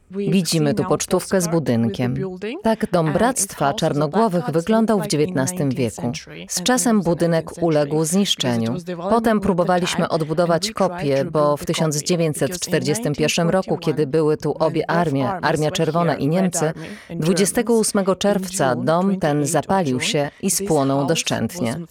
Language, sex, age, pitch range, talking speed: Polish, female, 20-39, 155-195 Hz, 120 wpm